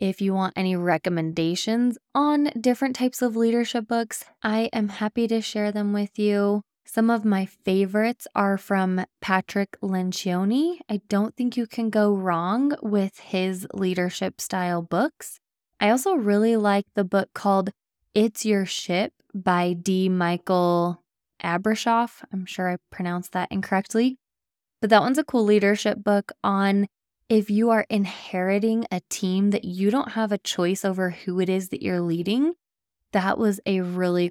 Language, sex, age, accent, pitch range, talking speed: English, female, 20-39, American, 185-230 Hz, 155 wpm